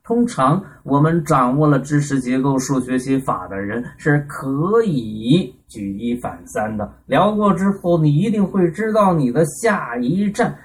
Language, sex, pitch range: Chinese, male, 125-180 Hz